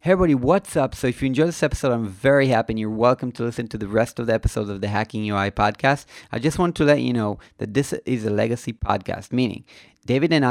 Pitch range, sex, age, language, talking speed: 105-125 Hz, male, 30-49, English, 255 wpm